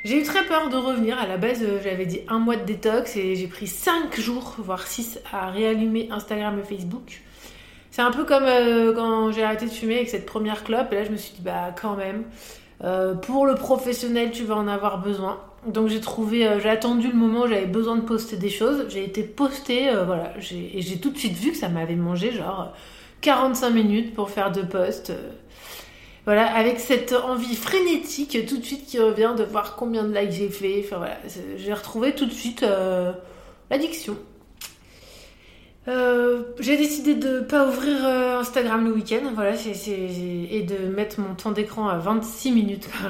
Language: French